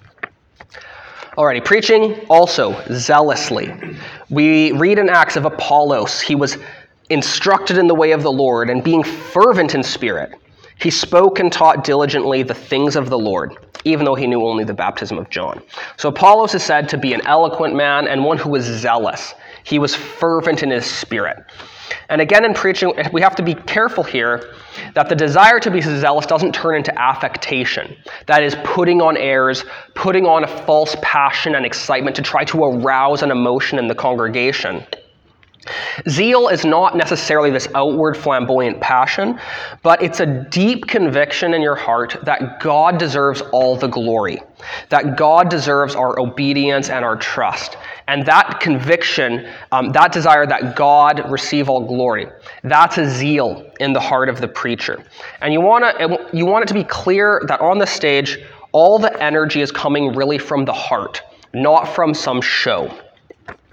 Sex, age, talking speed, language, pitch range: male, 20-39, 170 wpm, English, 135-170 Hz